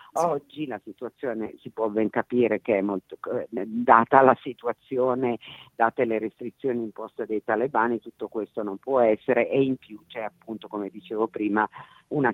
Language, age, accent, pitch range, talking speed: Italian, 50-69, native, 105-125 Hz, 160 wpm